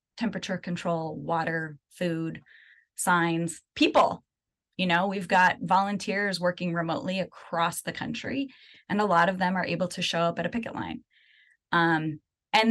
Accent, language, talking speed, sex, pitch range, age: American, English, 150 wpm, female, 165-200 Hz, 20-39